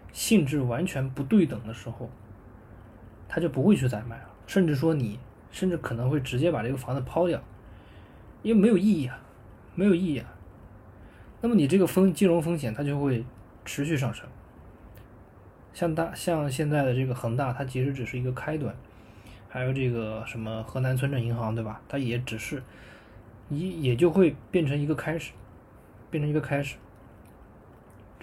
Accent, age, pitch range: native, 20-39, 110-150 Hz